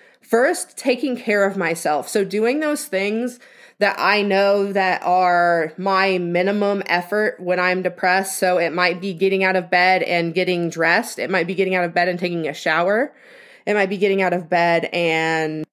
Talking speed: 190 wpm